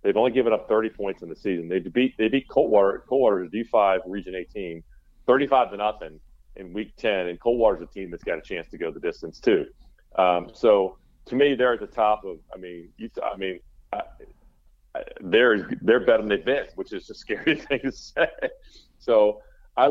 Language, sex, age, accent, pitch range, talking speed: English, male, 40-59, American, 90-115 Hz, 205 wpm